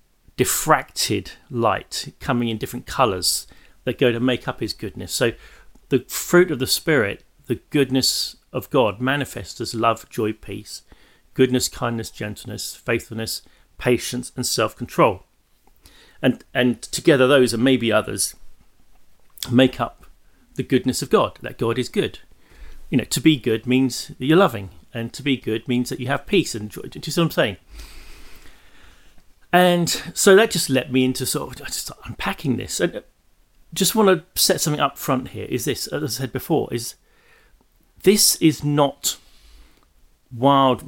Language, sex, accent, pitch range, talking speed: English, male, British, 115-145 Hz, 160 wpm